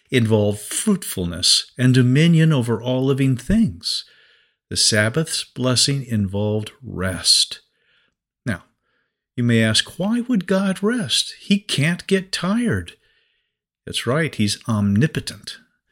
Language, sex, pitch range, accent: English, male, 110-155 Hz, American